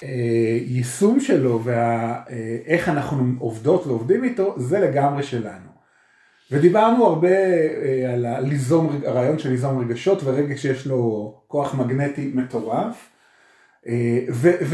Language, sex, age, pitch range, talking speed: Hebrew, male, 30-49, 125-170 Hz, 105 wpm